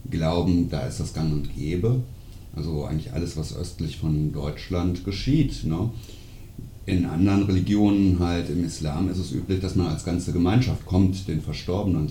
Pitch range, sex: 80-100 Hz, male